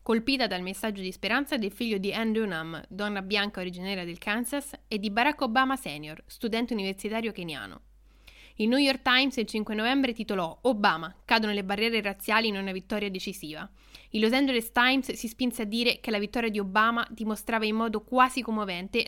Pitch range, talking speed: 200-240 Hz, 180 wpm